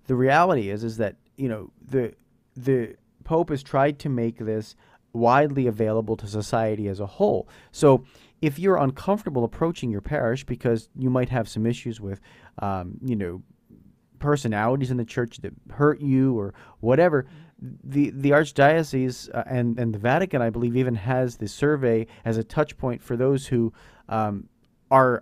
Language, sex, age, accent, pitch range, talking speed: English, male, 40-59, American, 115-140 Hz, 165 wpm